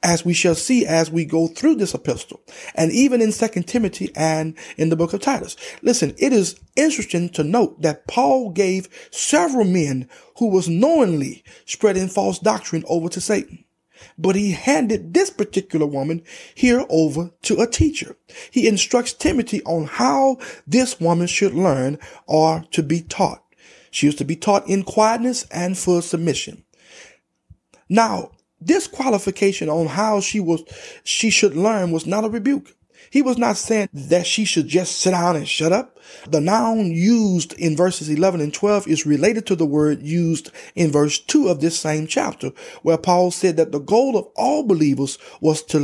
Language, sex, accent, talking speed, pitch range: English, male, American, 175 wpm, 160-225 Hz